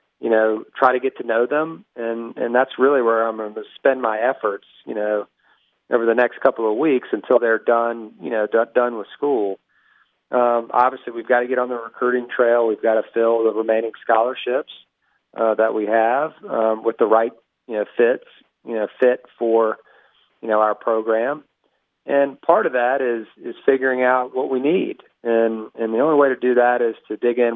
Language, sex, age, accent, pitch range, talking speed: English, male, 40-59, American, 110-125 Hz, 205 wpm